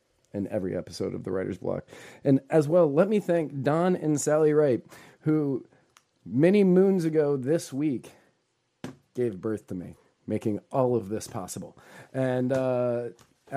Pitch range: 115-145 Hz